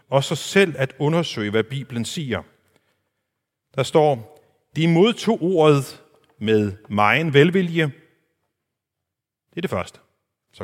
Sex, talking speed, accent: male, 120 wpm, native